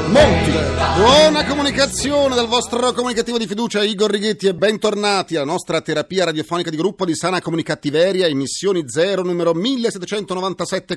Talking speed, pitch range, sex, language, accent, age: 135 wpm, 150-220 Hz, male, Italian, native, 40-59